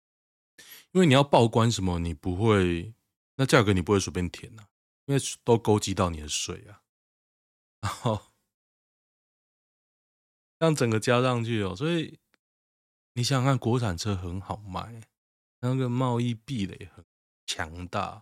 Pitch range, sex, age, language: 90-120 Hz, male, 20-39, Chinese